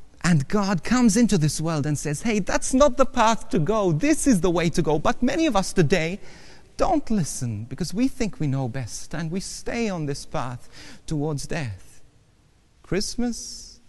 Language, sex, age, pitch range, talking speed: English, male, 40-59, 120-195 Hz, 185 wpm